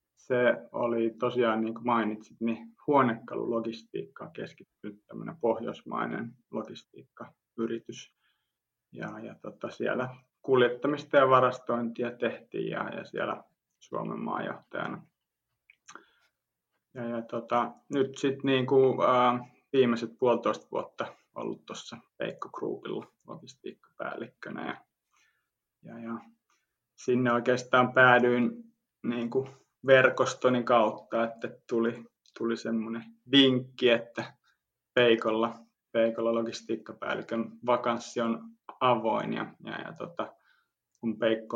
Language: Finnish